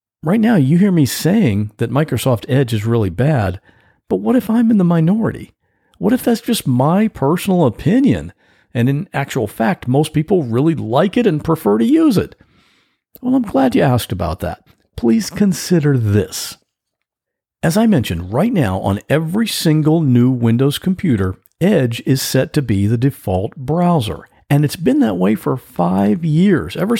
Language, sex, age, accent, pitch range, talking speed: English, male, 50-69, American, 120-200 Hz, 175 wpm